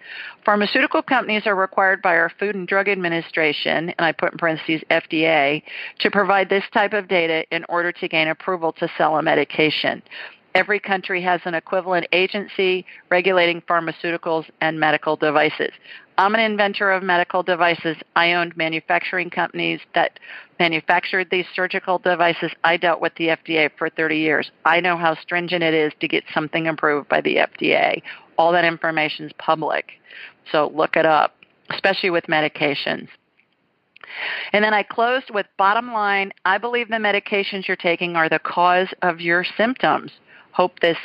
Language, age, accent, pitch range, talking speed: English, 50-69, American, 160-195 Hz, 160 wpm